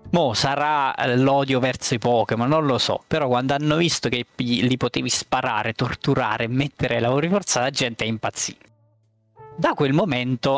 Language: Italian